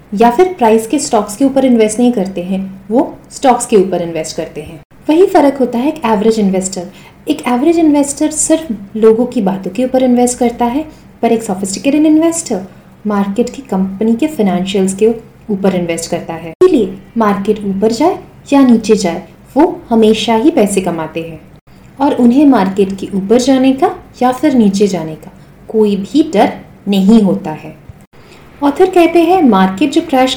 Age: 30-49